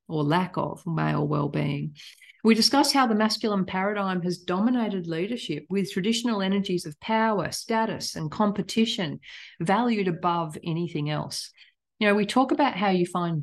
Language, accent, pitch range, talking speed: English, Australian, 160-200 Hz, 150 wpm